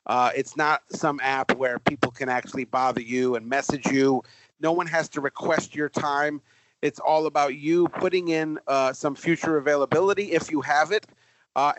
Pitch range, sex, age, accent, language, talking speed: 130-155 Hz, male, 40-59, American, English, 185 wpm